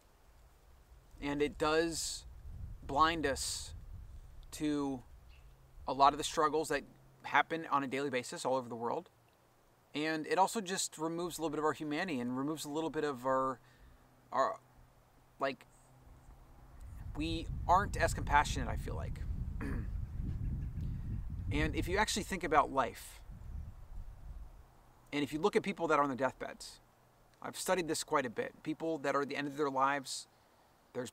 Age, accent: 30-49, American